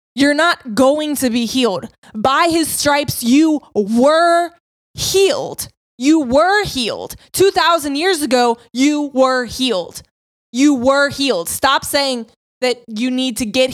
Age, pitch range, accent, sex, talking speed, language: 20-39, 240-285 Hz, American, female, 135 wpm, English